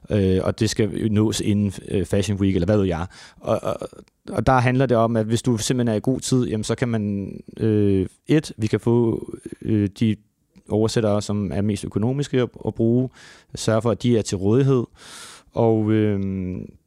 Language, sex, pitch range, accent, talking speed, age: Danish, male, 100-115 Hz, native, 190 wpm, 30-49